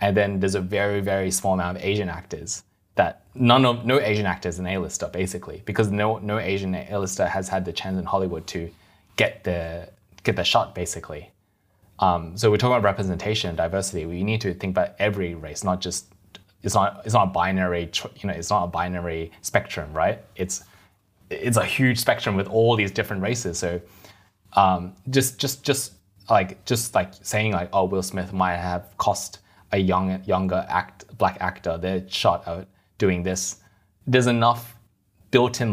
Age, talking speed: 20-39, 180 wpm